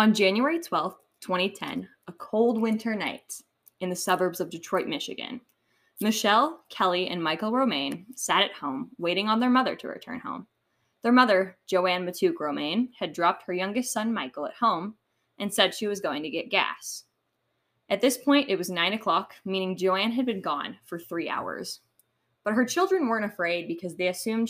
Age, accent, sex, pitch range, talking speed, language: 10-29, American, female, 185-240 Hz, 180 wpm, English